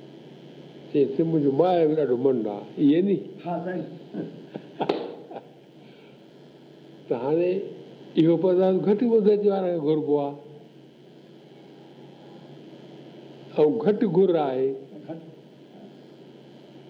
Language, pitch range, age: Hindi, 155-205 Hz, 60-79